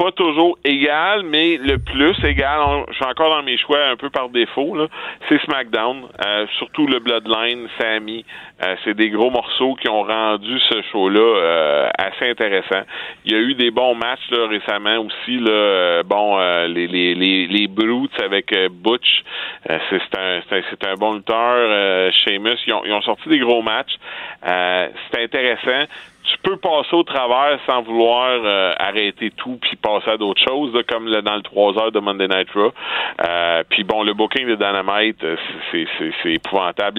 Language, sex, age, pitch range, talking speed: French, male, 40-59, 100-125 Hz, 185 wpm